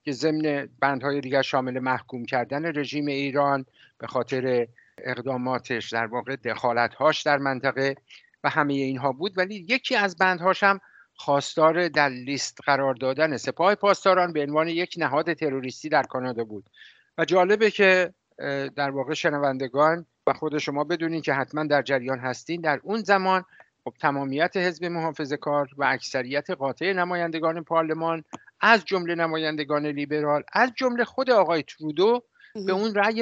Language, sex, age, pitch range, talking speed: English, male, 50-69, 140-185 Hz, 145 wpm